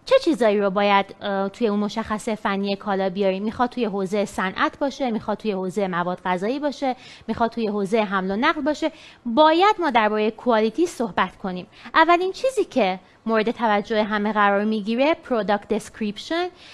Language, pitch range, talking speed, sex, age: English, 205-305 Hz, 155 wpm, female, 30-49